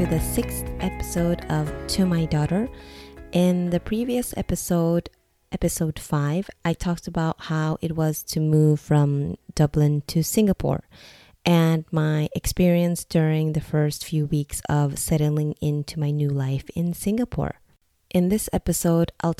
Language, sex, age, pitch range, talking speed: English, female, 20-39, 150-170 Hz, 140 wpm